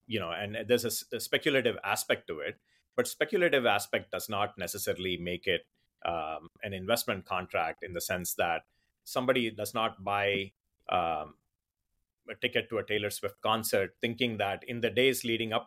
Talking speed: 170 wpm